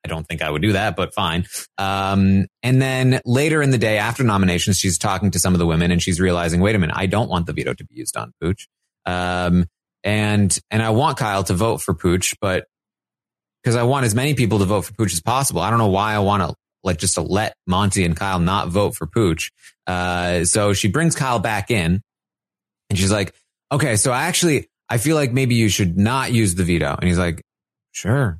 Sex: male